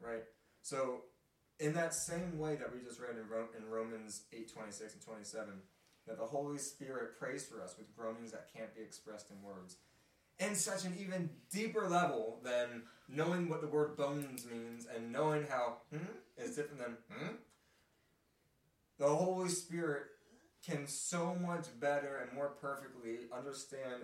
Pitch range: 110-140 Hz